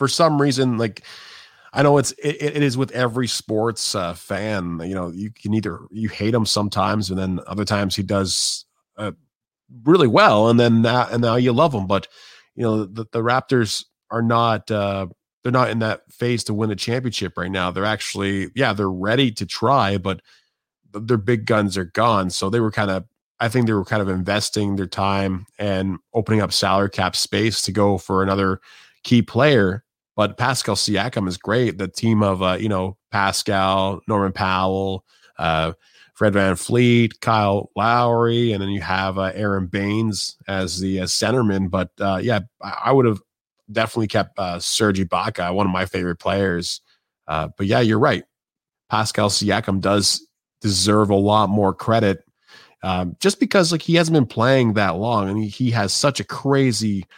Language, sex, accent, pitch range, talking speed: English, male, American, 95-115 Hz, 185 wpm